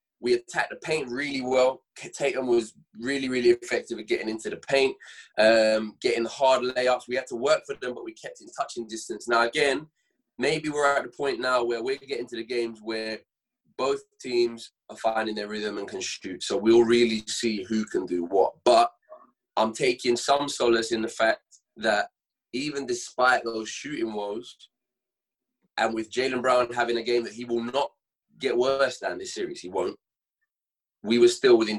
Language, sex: English, male